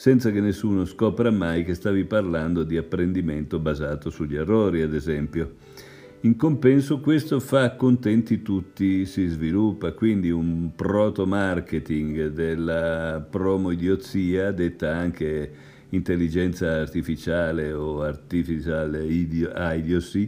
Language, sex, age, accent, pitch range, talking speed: Italian, male, 50-69, native, 85-105 Hz, 105 wpm